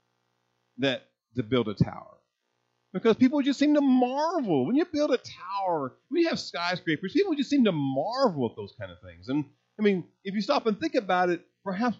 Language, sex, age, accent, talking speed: English, male, 40-59, American, 205 wpm